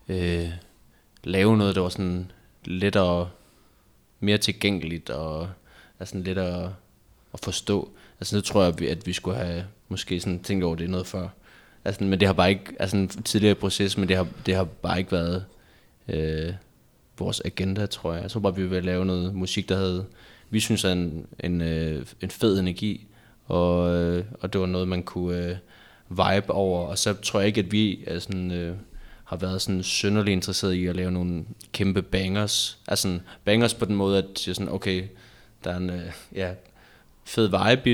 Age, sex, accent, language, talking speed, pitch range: 20-39, male, native, Danish, 190 wpm, 90-105 Hz